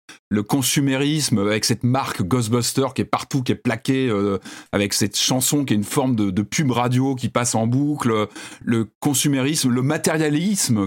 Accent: French